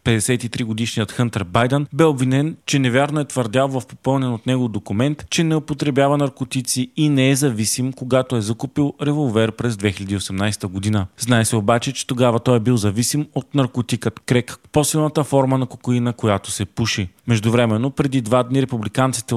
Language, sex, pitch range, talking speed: Bulgarian, male, 110-140 Hz, 165 wpm